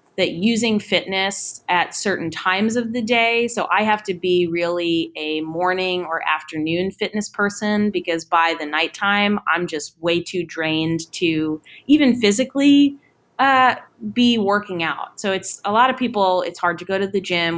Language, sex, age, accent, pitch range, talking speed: English, female, 20-39, American, 165-210 Hz, 170 wpm